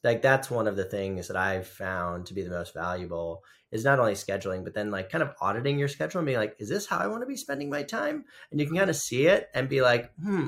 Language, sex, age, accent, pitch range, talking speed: English, male, 30-49, American, 95-135 Hz, 285 wpm